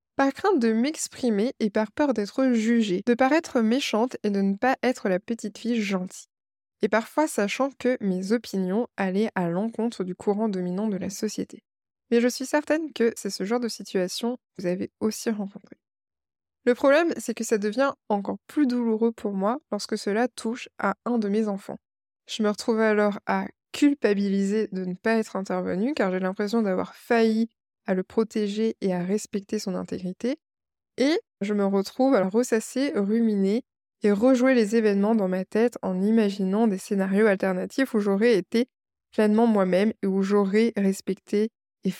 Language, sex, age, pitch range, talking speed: French, female, 20-39, 195-240 Hz, 175 wpm